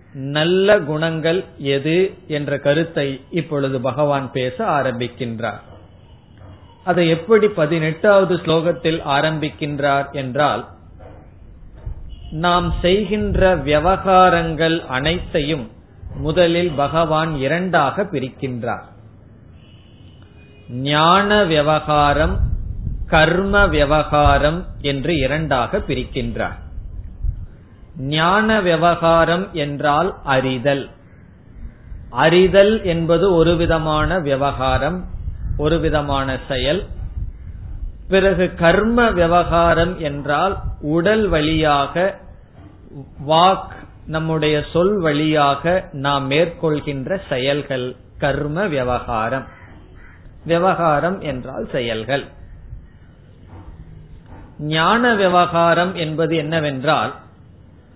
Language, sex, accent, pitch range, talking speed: Tamil, male, native, 115-170 Hz, 60 wpm